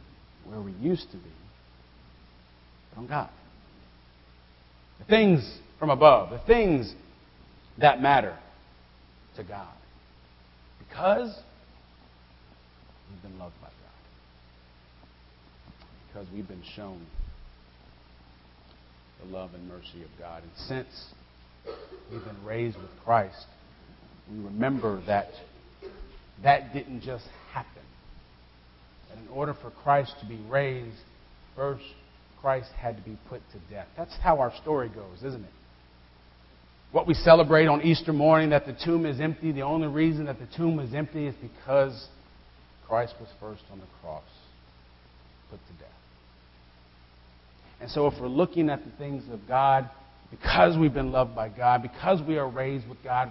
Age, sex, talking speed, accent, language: 40-59, male, 135 wpm, American, English